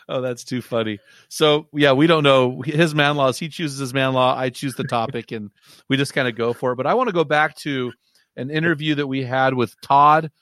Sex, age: male, 40-59